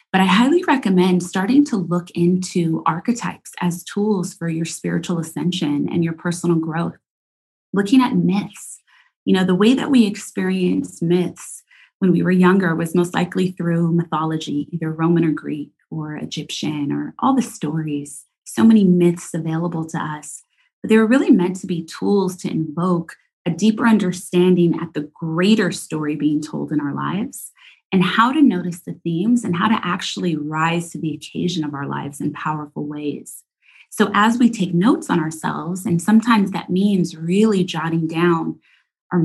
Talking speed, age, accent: 170 wpm, 30-49, American